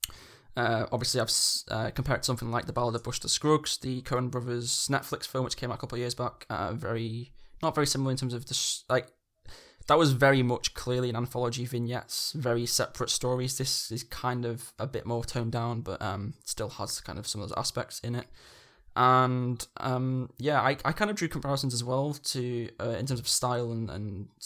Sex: male